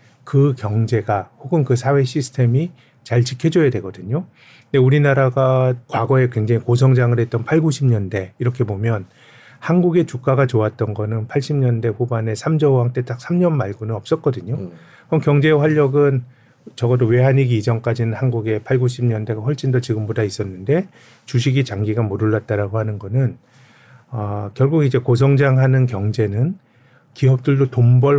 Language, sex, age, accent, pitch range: Korean, male, 40-59, native, 115-140 Hz